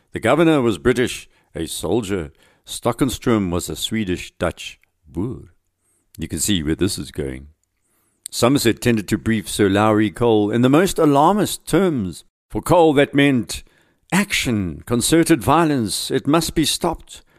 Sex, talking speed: male, 140 wpm